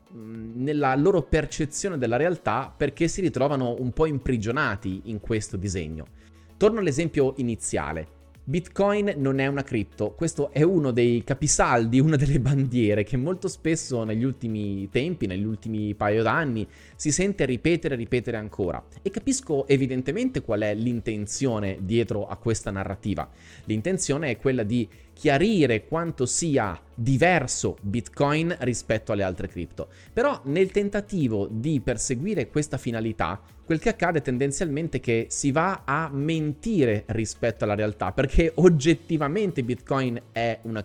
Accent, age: native, 20-39